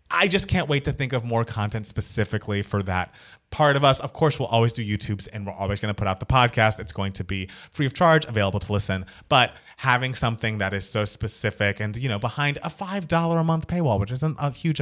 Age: 30-49